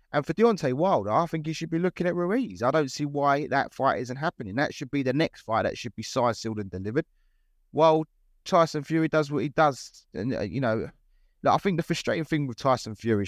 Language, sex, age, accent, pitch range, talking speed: English, male, 20-39, British, 105-135 Hz, 235 wpm